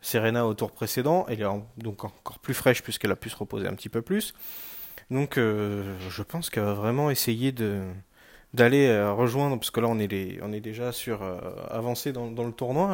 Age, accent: 20-39, French